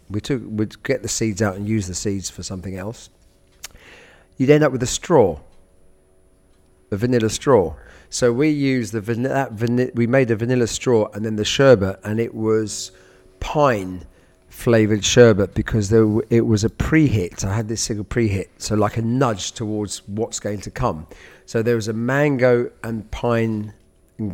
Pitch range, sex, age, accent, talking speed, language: 100-120 Hz, male, 40-59, British, 185 wpm, English